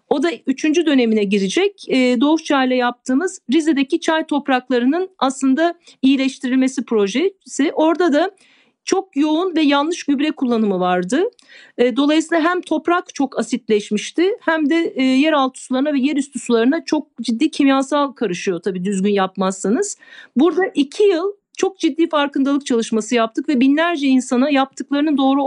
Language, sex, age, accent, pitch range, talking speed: Turkish, female, 50-69, native, 245-320 Hz, 135 wpm